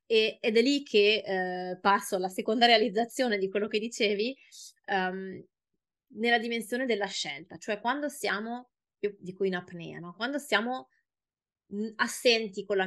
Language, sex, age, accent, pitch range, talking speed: Italian, female, 20-39, native, 185-230 Hz, 145 wpm